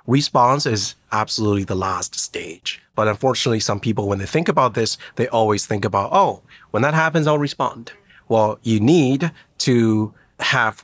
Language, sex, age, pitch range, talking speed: English, male, 30-49, 105-130 Hz, 165 wpm